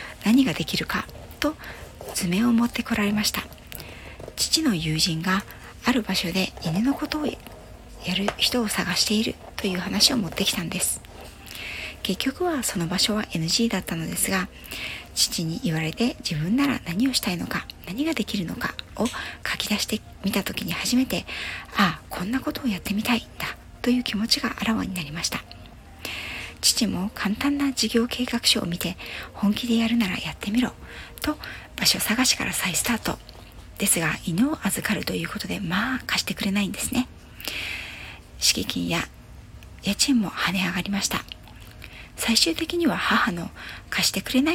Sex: female